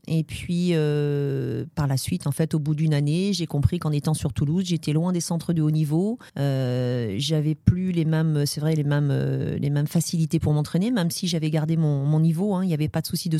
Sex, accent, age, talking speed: female, French, 40-59, 245 wpm